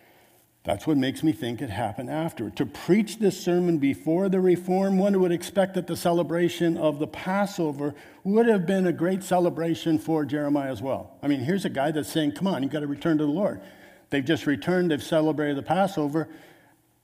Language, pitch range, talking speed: English, 130-170 Hz, 200 wpm